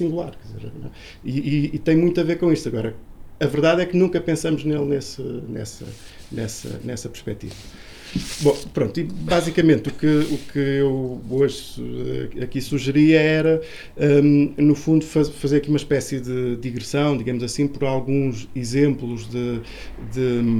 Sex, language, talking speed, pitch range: male, Portuguese, 150 wpm, 120-145 Hz